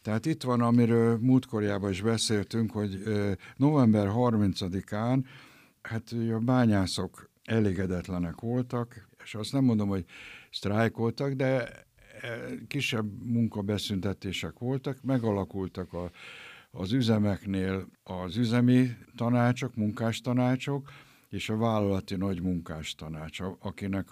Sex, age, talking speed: male, 60-79, 100 wpm